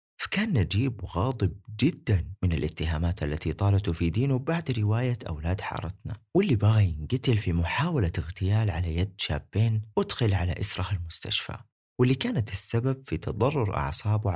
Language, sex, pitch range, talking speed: Arabic, male, 85-115 Hz, 140 wpm